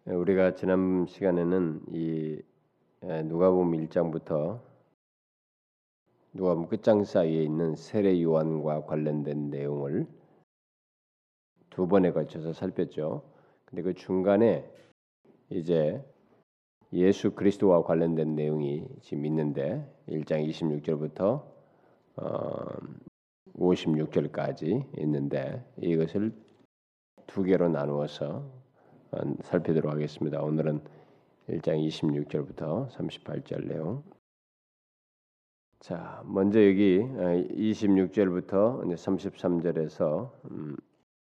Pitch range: 75-100 Hz